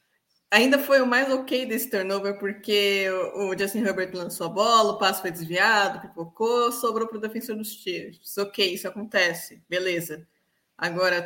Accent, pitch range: Brazilian, 190-245 Hz